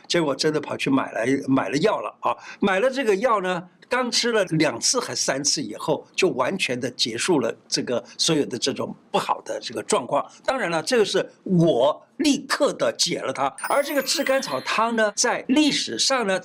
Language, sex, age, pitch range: Chinese, male, 60-79, 165-255 Hz